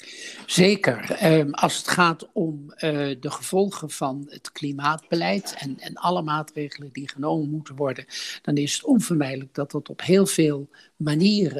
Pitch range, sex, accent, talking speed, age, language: 150-180 Hz, male, Dutch, 150 wpm, 60-79, Dutch